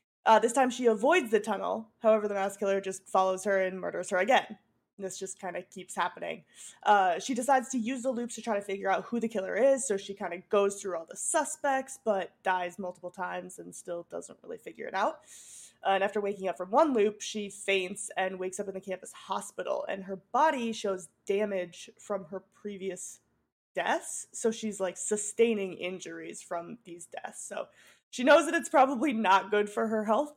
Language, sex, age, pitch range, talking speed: English, female, 20-39, 195-250 Hz, 205 wpm